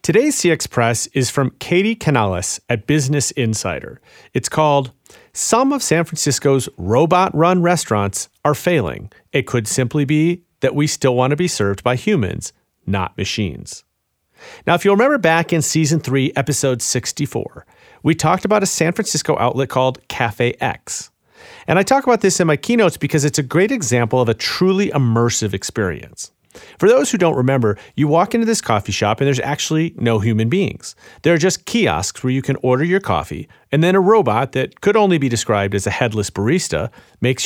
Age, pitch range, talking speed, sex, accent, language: 40-59, 110-165 Hz, 185 wpm, male, American, English